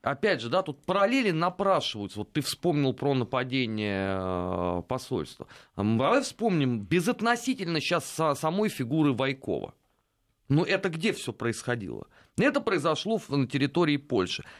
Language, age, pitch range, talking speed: Russian, 30-49, 120-175 Hz, 120 wpm